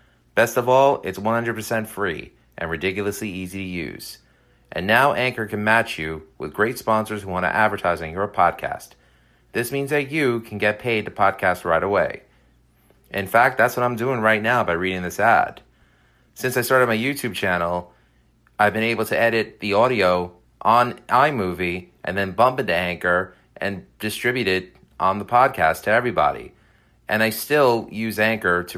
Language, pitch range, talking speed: English, 90-120 Hz, 175 wpm